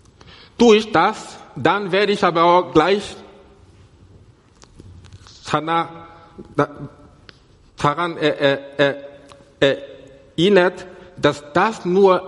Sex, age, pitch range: male, 60-79, 120-175 Hz